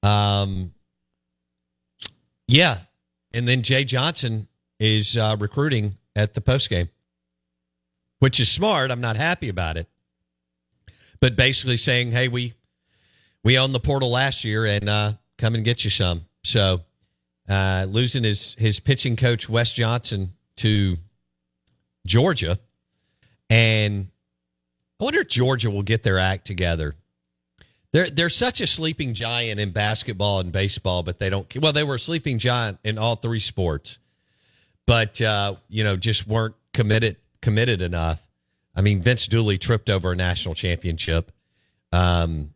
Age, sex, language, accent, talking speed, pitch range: 50-69, male, English, American, 145 wpm, 85-115 Hz